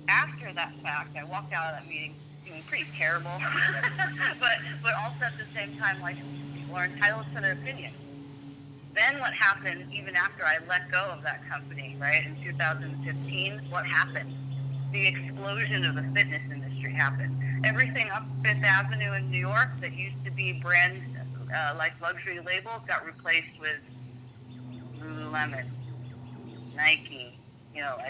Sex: female